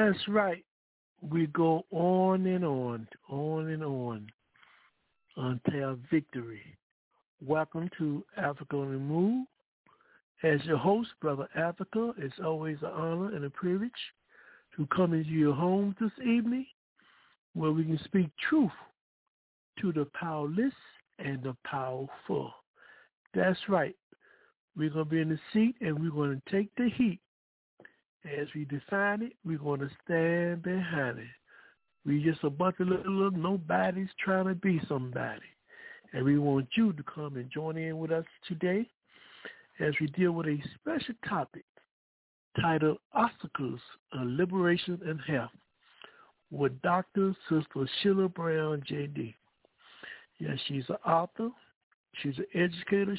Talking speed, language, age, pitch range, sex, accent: 140 wpm, English, 60-79, 145-190 Hz, male, American